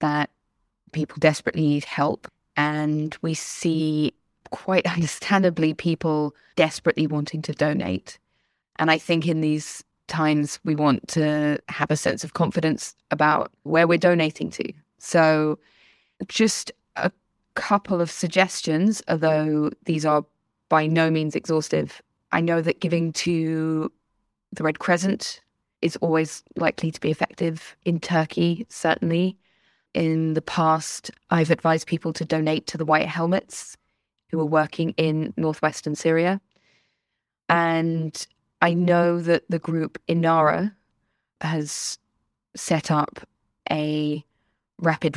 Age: 20-39